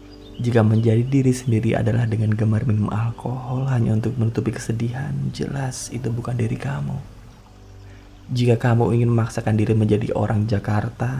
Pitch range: 110-140 Hz